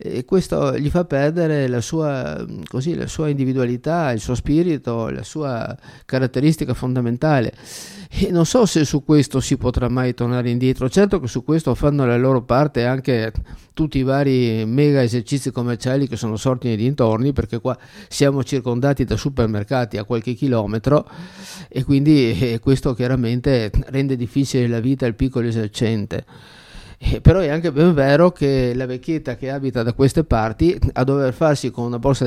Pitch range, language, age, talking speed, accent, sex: 120-145 Hz, Italian, 50-69, 160 wpm, native, male